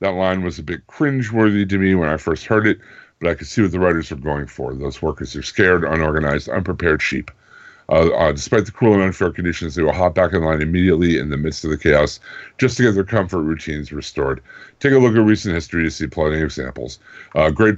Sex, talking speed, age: female, 240 wpm, 50-69